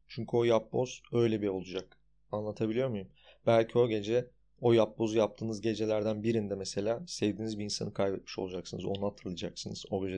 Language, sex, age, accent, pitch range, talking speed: Turkish, male, 30-49, native, 95-110 Hz, 155 wpm